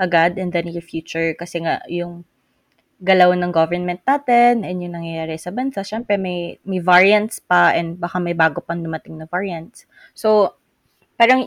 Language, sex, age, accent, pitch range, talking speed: English, female, 20-39, Filipino, 175-215 Hz, 165 wpm